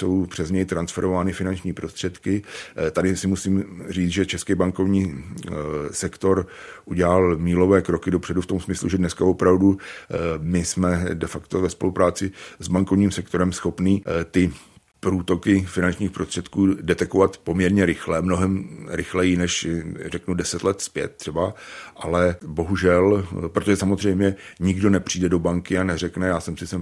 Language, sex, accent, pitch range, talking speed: Czech, male, native, 85-95 Hz, 140 wpm